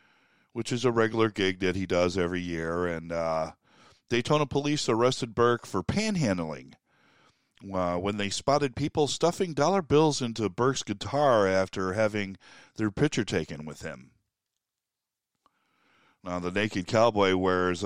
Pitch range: 90-120 Hz